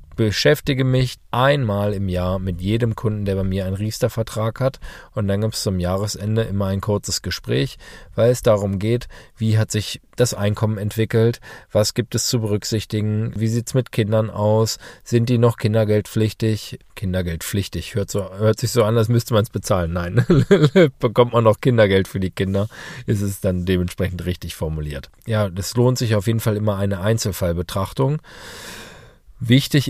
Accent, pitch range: German, 100-120 Hz